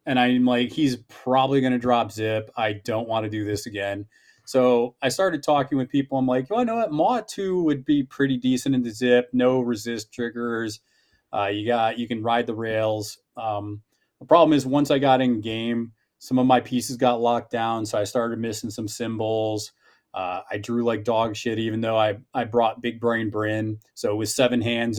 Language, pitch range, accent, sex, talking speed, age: English, 110-130 Hz, American, male, 210 wpm, 20-39